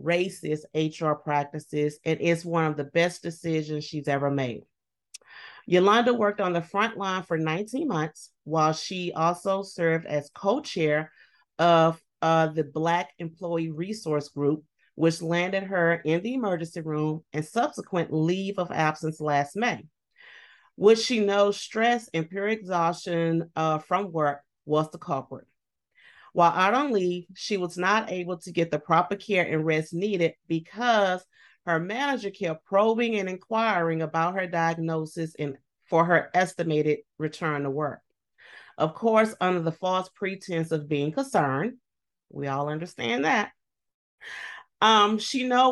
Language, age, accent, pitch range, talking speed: English, 30-49, American, 155-195 Hz, 145 wpm